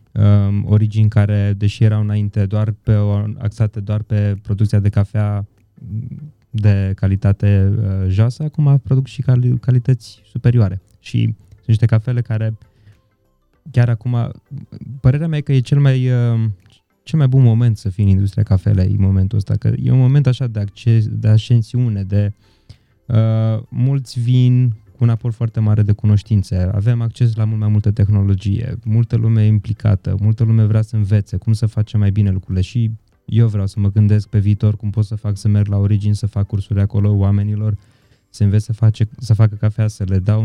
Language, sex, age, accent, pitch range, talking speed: Romanian, male, 20-39, native, 105-115 Hz, 180 wpm